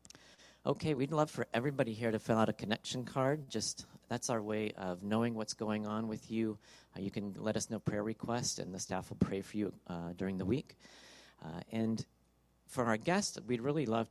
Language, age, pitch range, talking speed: English, 40-59, 95-115 Hz, 215 wpm